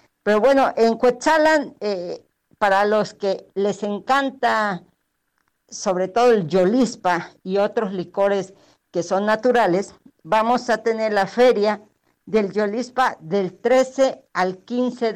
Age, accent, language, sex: 50-69, American, Spanish, female